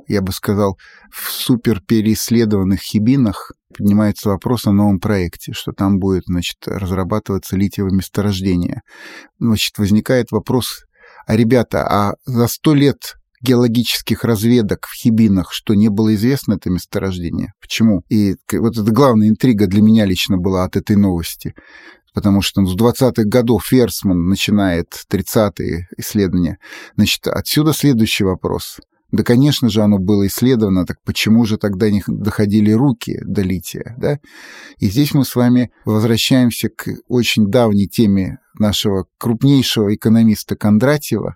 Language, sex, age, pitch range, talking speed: Russian, male, 30-49, 100-120 Hz, 135 wpm